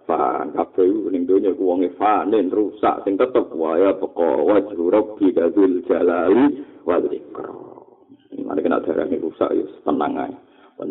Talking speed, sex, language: 145 wpm, male, Indonesian